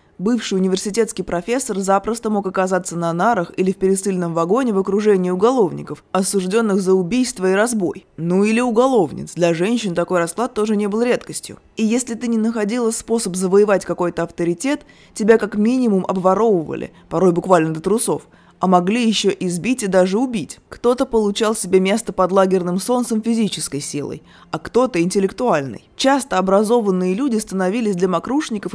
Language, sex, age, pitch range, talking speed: Russian, female, 20-39, 190-225 Hz, 155 wpm